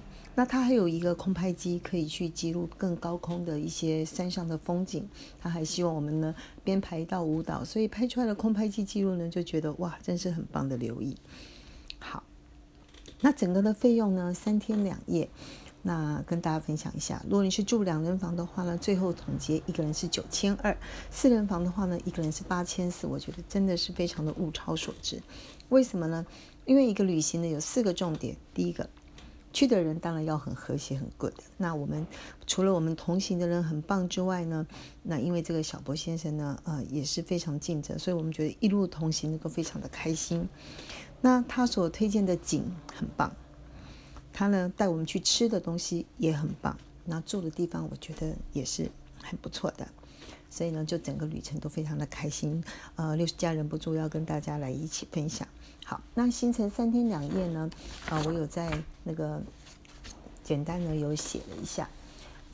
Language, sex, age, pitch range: Chinese, female, 40-59, 155-190 Hz